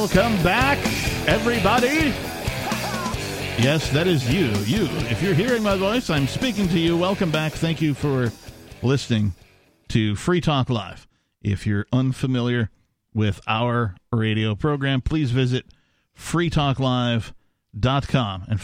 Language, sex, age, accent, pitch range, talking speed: English, male, 50-69, American, 110-145 Hz, 120 wpm